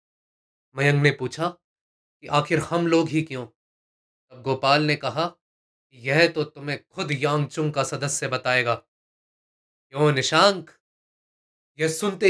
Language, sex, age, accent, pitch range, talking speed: Hindi, male, 20-39, native, 135-195 Hz, 120 wpm